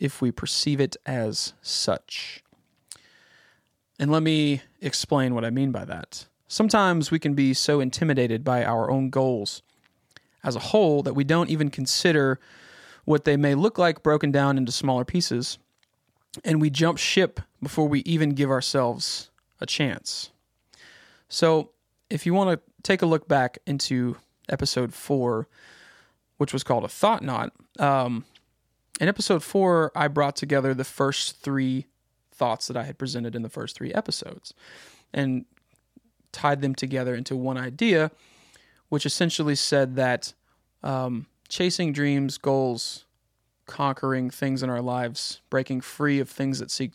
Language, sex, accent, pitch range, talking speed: English, male, American, 125-150 Hz, 150 wpm